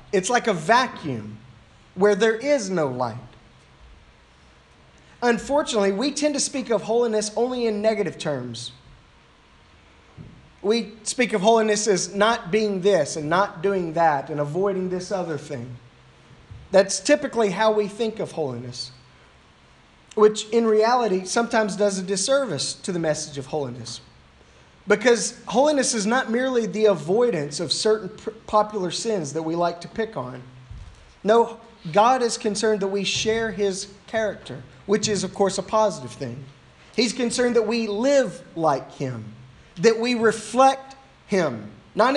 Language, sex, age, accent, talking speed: English, male, 30-49, American, 145 wpm